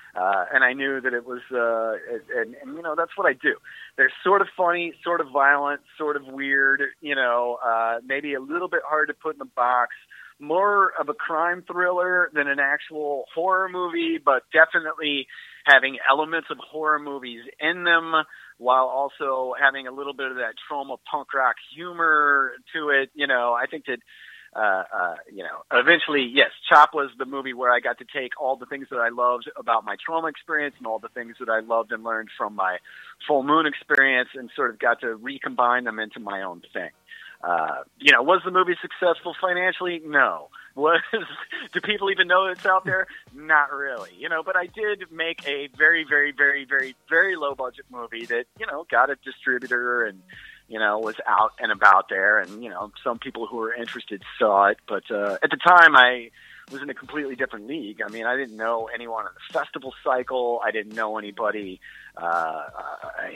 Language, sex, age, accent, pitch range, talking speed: English, male, 30-49, American, 125-165 Hz, 205 wpm